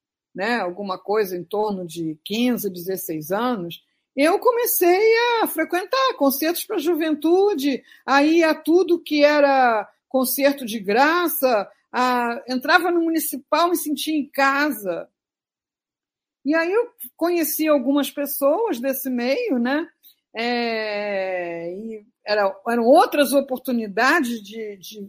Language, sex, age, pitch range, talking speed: Portuguese, female, 50-69, 240-345 Hz, 120 wpm